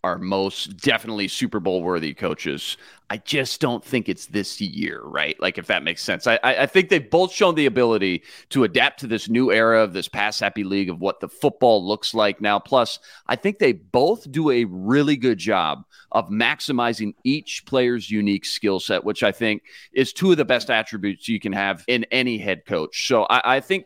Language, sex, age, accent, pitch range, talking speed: English, male, 30-49, American, 105-155 Hz, 205 wpm